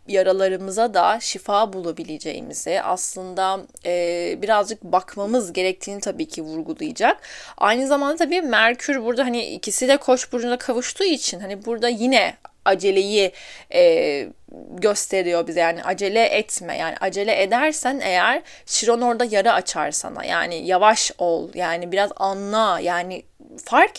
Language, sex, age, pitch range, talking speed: Turkish, female, 10-29, 185-245 Hz, 125 wpm